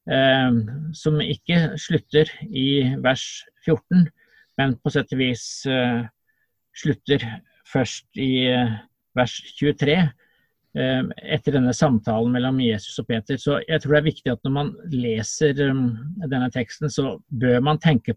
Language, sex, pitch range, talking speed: English, male, 120-145 Hz, 150 wpm